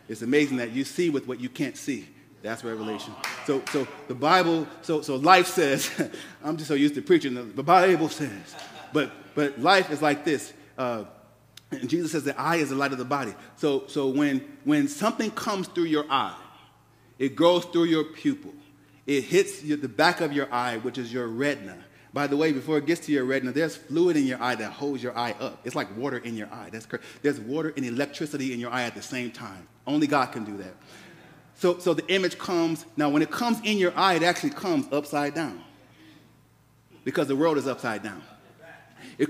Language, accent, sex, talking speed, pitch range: English, American, male, 210 wpm, 135-180 Hz